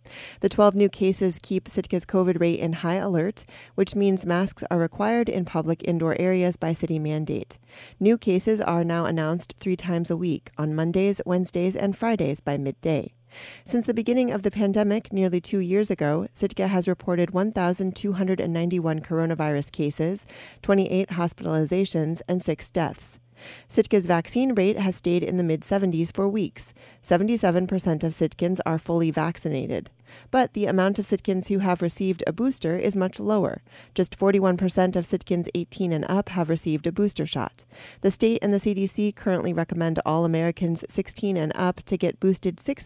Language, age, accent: English, 30-49, American